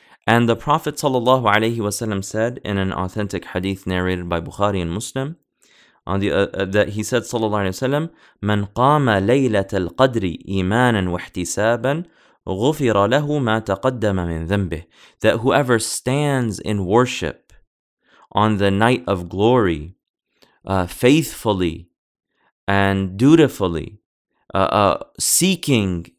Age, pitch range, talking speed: 30-49, 95-125 Hz, 120 wpm